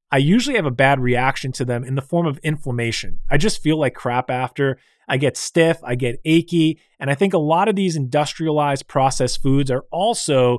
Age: 30-49